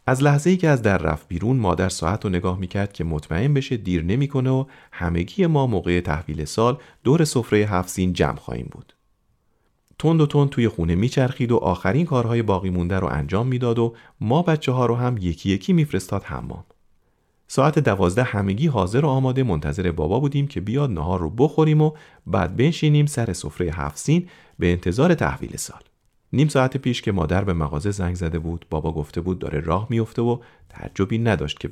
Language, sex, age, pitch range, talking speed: Persian, male, 40-59, 85-130 Hz, 180 wpm